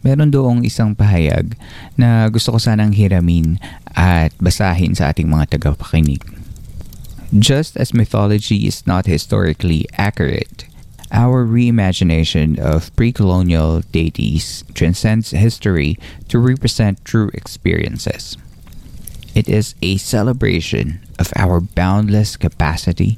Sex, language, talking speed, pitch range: male, Filipino, 105 wpm, 85-115 Hz